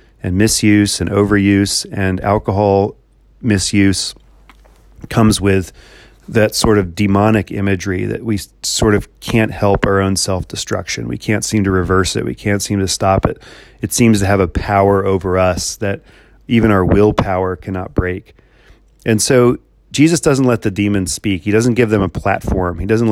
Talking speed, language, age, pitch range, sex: 170 wpm, English, 40-59, 95-110 Hz, male